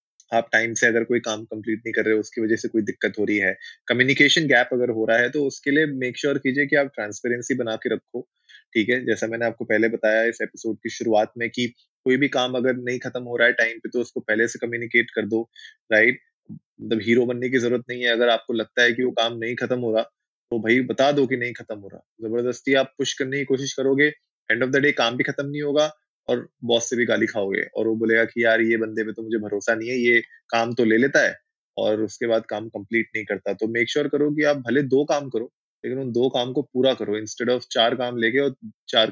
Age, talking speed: 20-39, 260 wpm